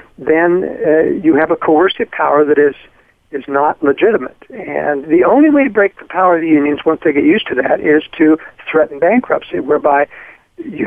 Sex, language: male, English